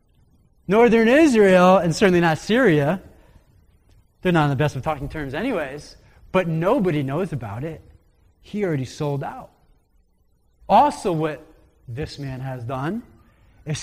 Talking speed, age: 135 wpm, 30-49